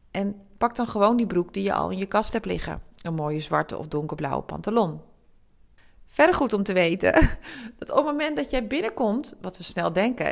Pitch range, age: 195-250 Hz, 40-59